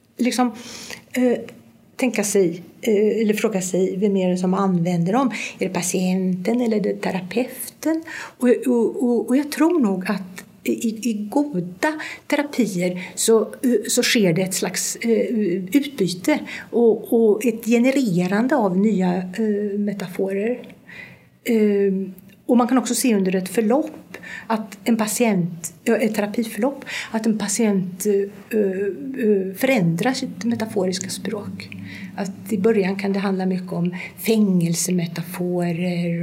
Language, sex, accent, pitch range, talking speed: Swedish, female, native, 180-225 Hz, 125 wpm